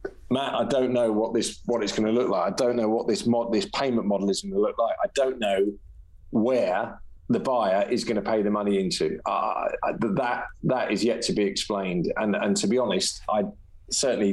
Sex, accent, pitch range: male, British, 95-120 Hz